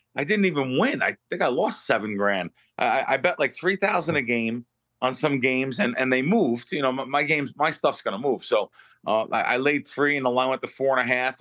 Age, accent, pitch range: 30-49, American, 120-140 Hz